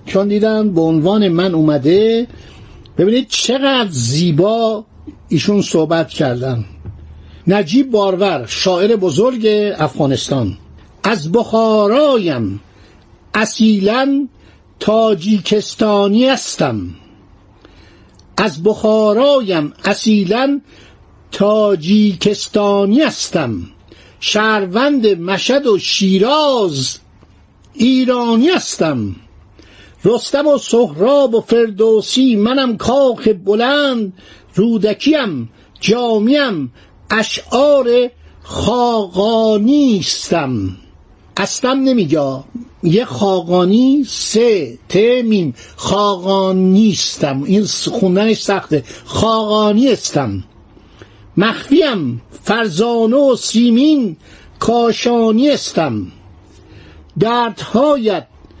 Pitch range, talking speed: 145-230 Hz, 65 wpm